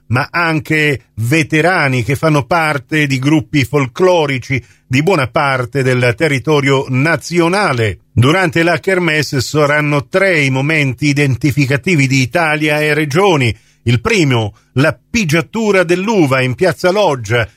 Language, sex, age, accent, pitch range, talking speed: Italian, male, 50-69, native, 130-170 Hz, 120 wpm